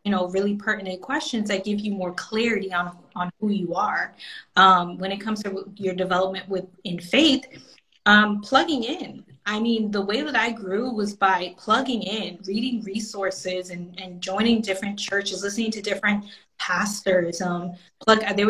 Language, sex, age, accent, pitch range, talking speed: English, female, 20-39, American, 185-220 Hz, 170 wpm